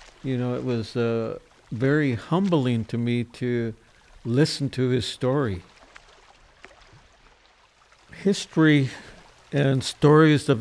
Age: 60-79